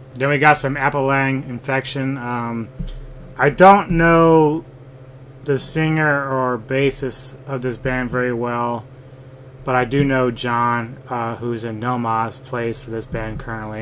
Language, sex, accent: English, male, American